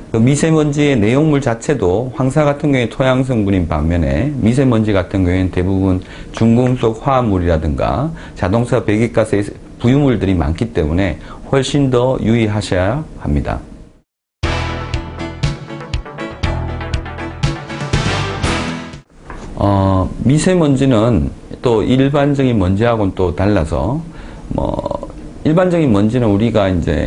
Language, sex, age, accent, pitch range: Korean, male, 40-59, native, 90-130 Hz